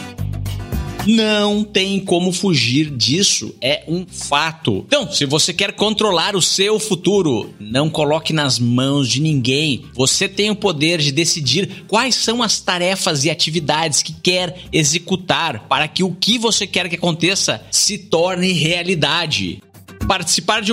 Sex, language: male, Portuguese